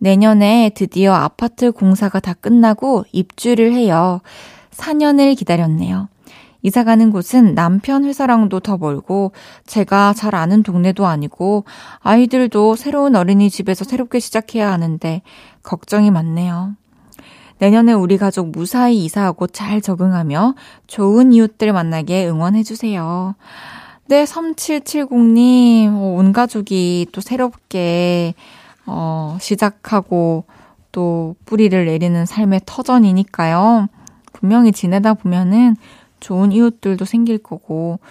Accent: native